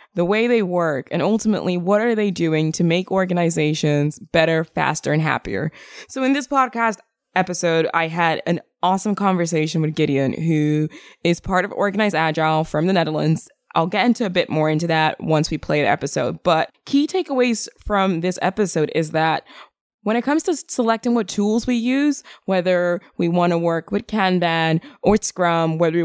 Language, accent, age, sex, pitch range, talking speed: English, American, 20-39, female, 160-210 Hz, 180 wpm